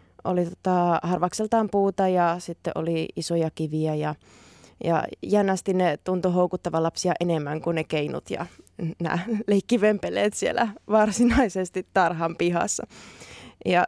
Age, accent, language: 20-39, native, Finnish